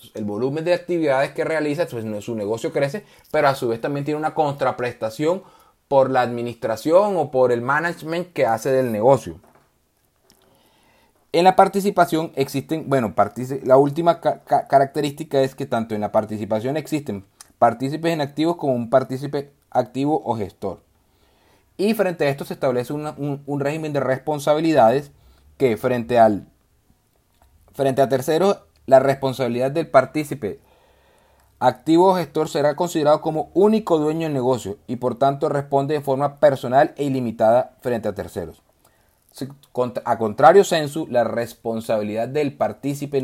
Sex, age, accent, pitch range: male, 30-49, Venezuelan, 120-155 Hz